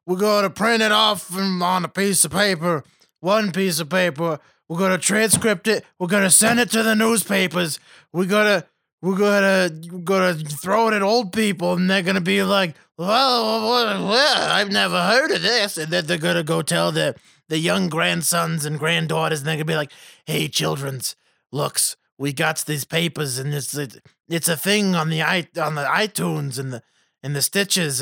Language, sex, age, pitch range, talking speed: English, male, 20-39, 160-195 Hz, 190 wpm